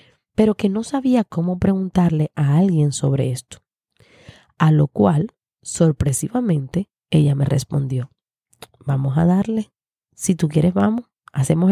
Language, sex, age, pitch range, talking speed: Spanish, female, 30-49, 145-200 Hz, 130 wpm